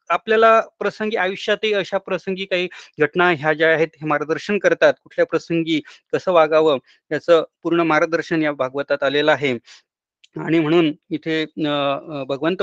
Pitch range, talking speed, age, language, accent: 165-210 Hz, 135 wpm, 30-49, Marathi, native